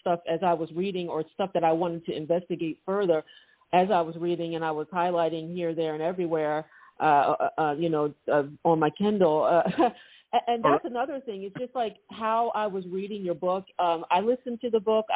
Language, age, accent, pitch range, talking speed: English, 50-69, American, 175-220 Hz, 215 wpm